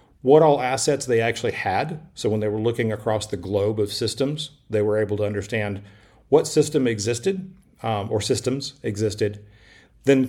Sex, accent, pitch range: male, American, 105-125 Hz